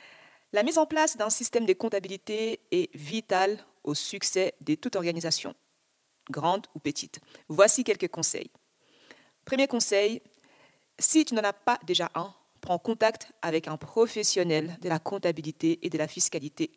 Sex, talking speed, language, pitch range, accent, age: female, 150 wpm, French, 175-240 Hz, French, 40-59